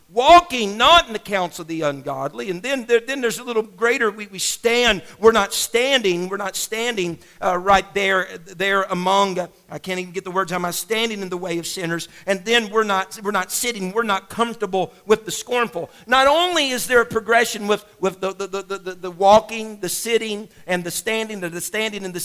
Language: English